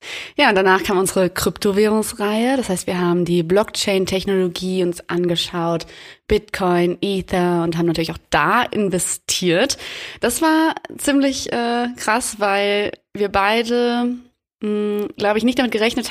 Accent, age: German, 20-39